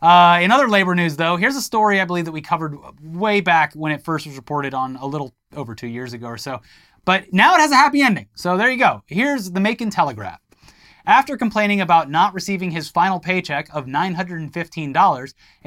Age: 30-49